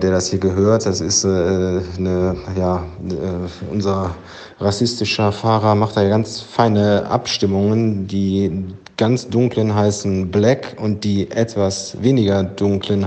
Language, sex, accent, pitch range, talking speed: German, male, German, 90-100 Hz, 130 wpm